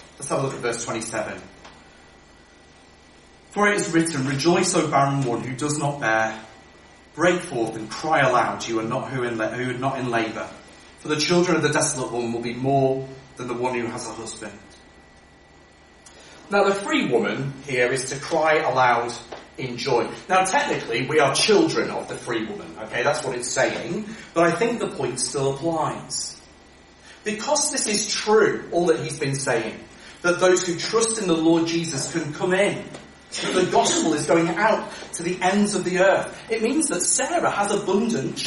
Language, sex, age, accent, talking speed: English, male, 30-49, British, 185 wpm